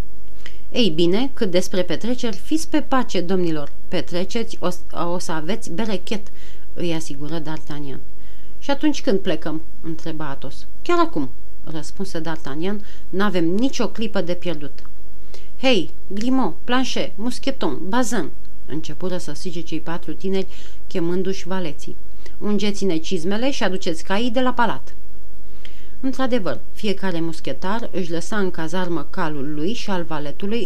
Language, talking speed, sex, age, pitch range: Romanian, 130 wpm, female, 40-59, 165-225 Hz